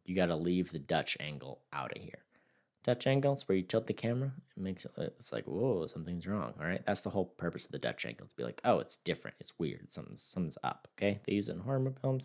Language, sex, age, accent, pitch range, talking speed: English, male, 20-39, American, 90-125 Hz, 260 wpm